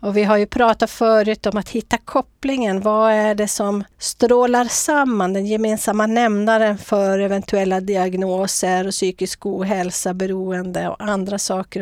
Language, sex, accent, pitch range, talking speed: English, female, Swedish, 190-235 Hz, 145 wpm